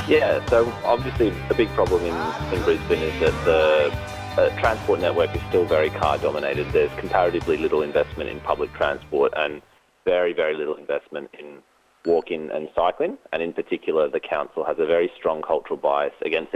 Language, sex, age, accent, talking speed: English, male, 30-49, Australian, 175 wpm